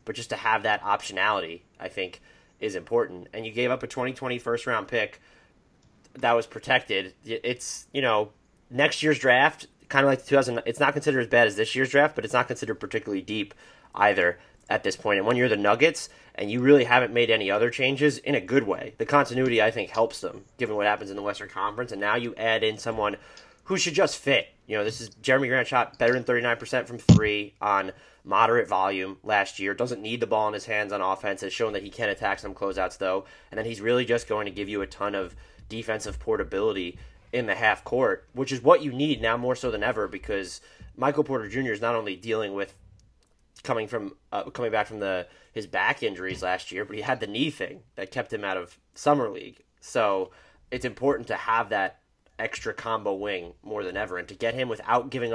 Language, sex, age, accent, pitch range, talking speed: English, male, 30-49, American, 105-130 Hz, 225 wpm